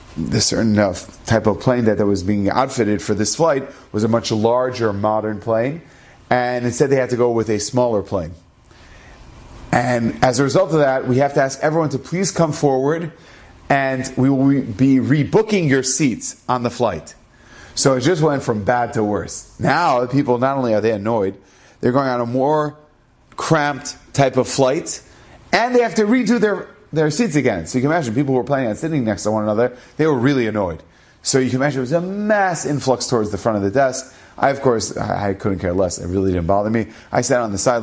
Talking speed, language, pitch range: 215 wpm, English, 105-140 Hz